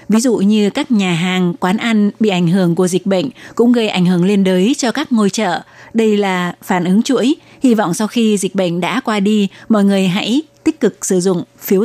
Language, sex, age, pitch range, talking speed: Vietnamese, female, 20-39, 190-225 Hz, 235 wpm